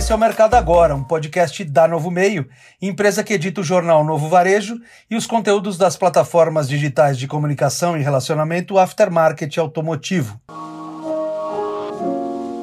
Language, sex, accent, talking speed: Portuguese, male, Brazilian, 140 wpm